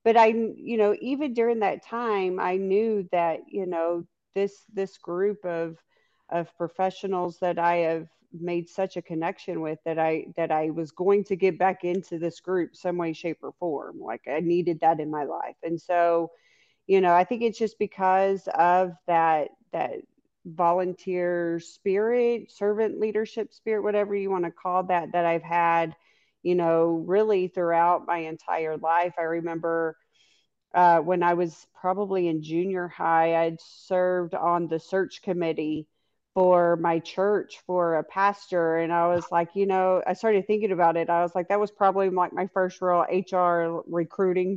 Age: 40-59